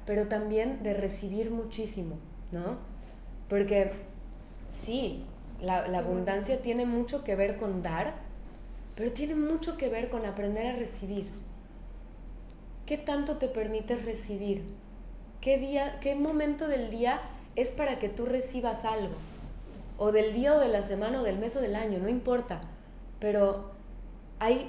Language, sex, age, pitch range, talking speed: Spanish, female, 20-39, 200-260 Hz, 140 wpm